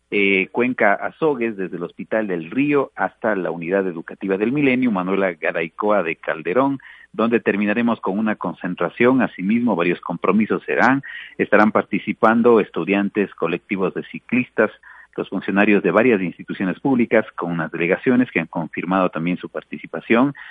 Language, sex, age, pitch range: Spanish, male, 50-69, 95-130 Hz